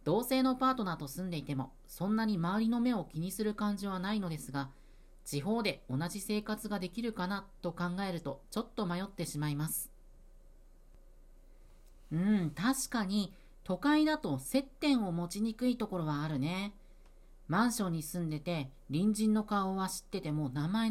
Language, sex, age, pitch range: Japanese, female, 40-59, 150-225 Hz